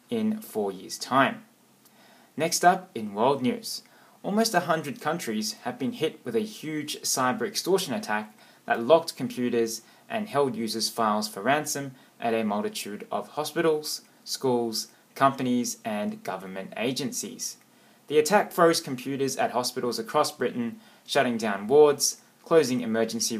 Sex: male